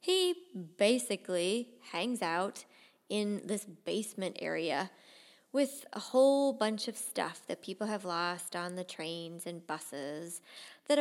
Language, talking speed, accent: English, 130 wpm, American